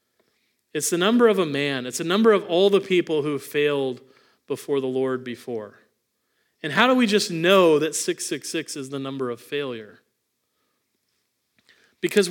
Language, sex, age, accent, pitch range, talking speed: English, male, 40-59, American, 145-200 Hz, 160 wpm